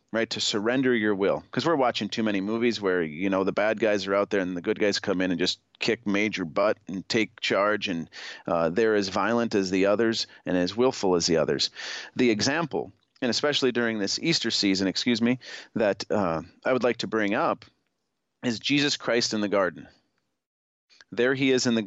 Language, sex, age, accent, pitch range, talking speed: English, male, 40-59, American, 100-125 Hz, 210 wpm